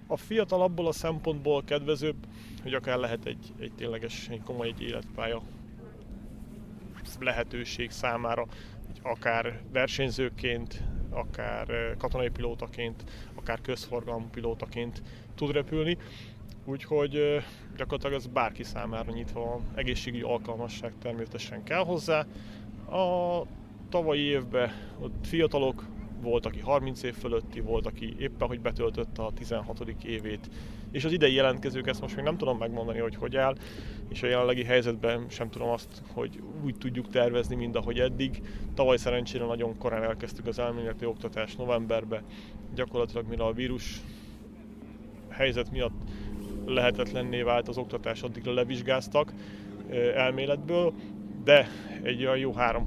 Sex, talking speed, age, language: male, 130 wpm, 30-49, Hungarian